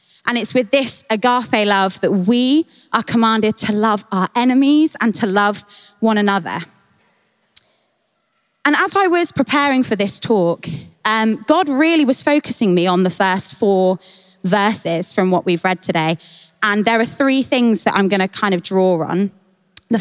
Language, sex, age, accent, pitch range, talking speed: English, female, 20-39, British, 185-240 Hz, 170 wpm